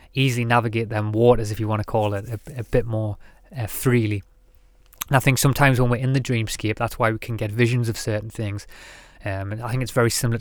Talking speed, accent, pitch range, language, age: 235 wpm, British, 105-120 Hz, English, 20-39